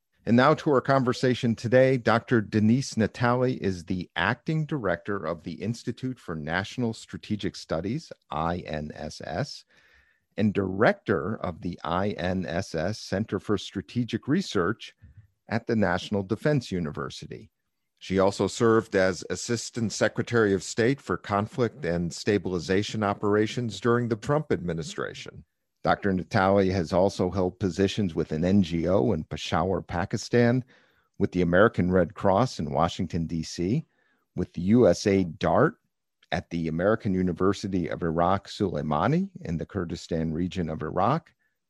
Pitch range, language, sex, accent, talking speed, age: 90-115 Hz, English, male, American, 125 wpm, 50-69